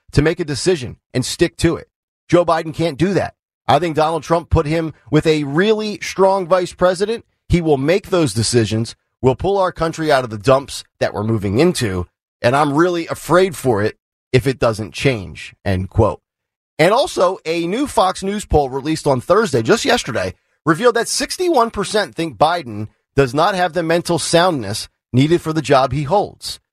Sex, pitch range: male, 130-185 Hz